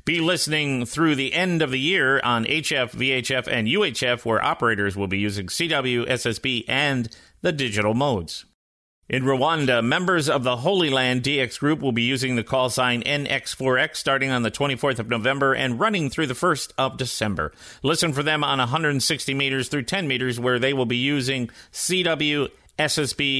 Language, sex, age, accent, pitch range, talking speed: English, male, 40-59, American, 120-145 Hz, 175 wpm